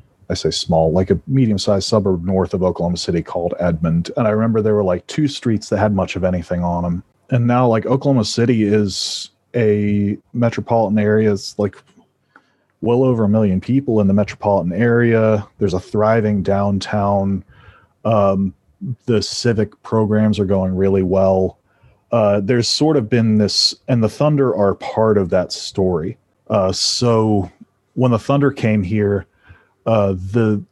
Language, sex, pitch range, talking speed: English, male, 95-110 Hz, 160 wpm